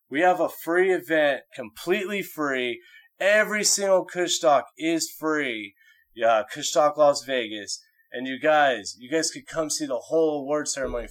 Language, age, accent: English, 20-39, American